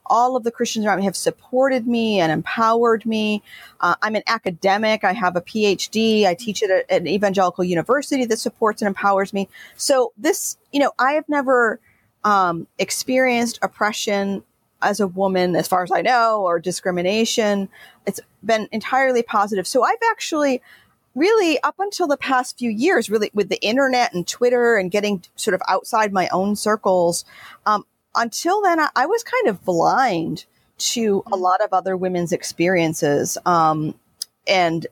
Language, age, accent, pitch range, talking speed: English, 40-59, American, 180-230 Hz, 165 wpm